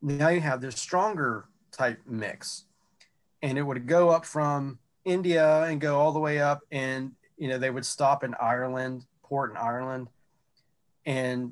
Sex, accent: male, American